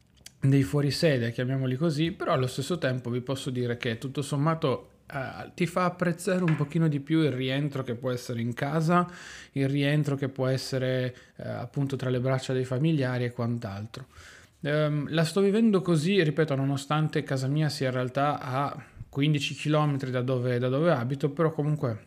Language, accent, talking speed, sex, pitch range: Italian, native, 170 wpm, male, 125-150 Hz